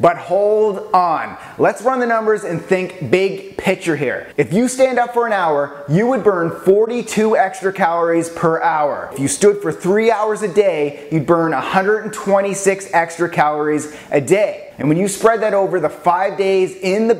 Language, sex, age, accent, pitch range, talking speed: English, male, 30-49, American, 165-215 Hz, 185 wpm